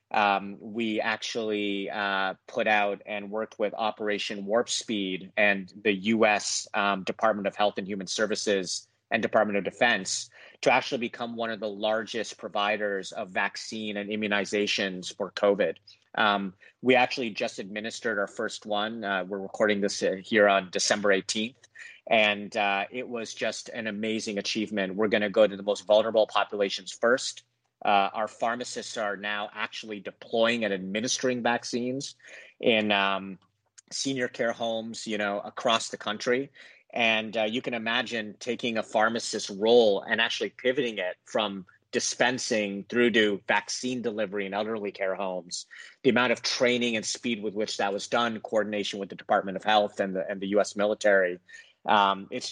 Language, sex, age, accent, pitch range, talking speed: English, male, 30-49, American, 100-110 Hz, 160 wpm